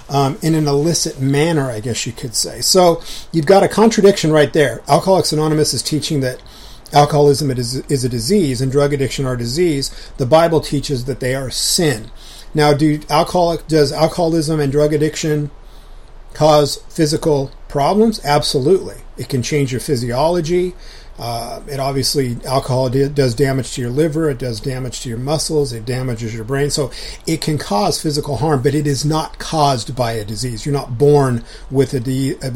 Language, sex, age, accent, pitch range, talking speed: English, male, 40-59, American, 130-155 Hz, 175 wpm